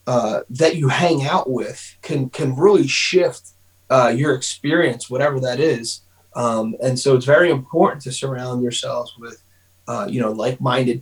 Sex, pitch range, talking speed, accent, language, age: male, 130-170 Hz, 165 wpm, American, English, 30-49